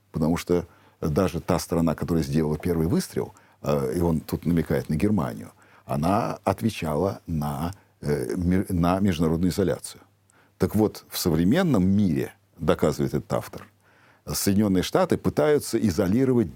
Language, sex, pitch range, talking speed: Russian, male, 90-120 Hz, 125 wpm